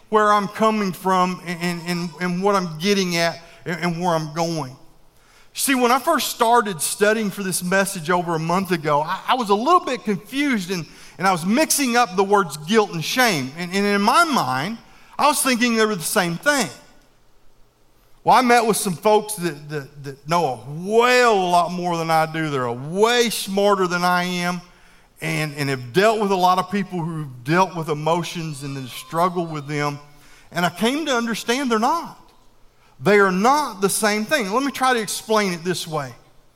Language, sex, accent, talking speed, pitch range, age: English, male, American, 205 wpm, 165-220 Hz, 50-69